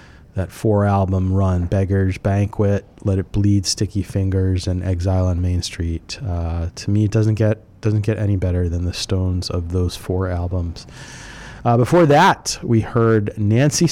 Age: 30-49